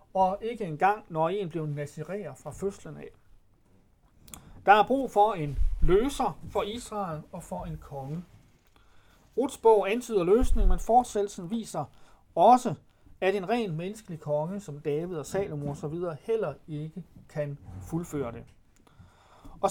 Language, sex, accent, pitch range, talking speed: Danish, male, native, 150-210 Hz, 140 wpm